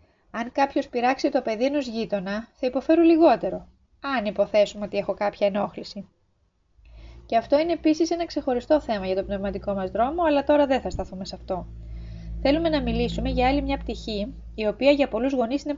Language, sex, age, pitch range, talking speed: Greek, female, 20-39, 205-285 Hz, 185 wpm